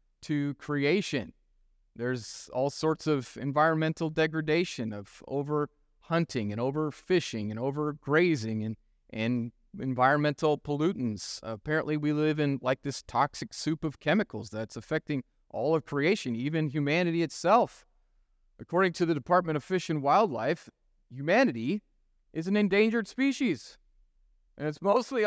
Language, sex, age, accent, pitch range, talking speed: English, male, 30-49, American, 115-175 Hz, 135 wpm